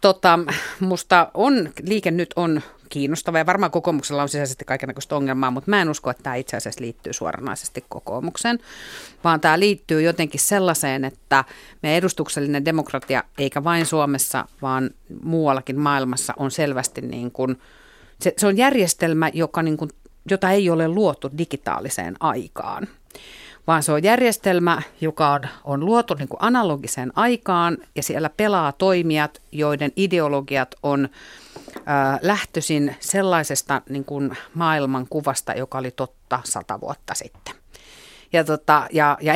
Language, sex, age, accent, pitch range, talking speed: Finnish, female, 50-69, native, 140-175 Hz, 130 wpm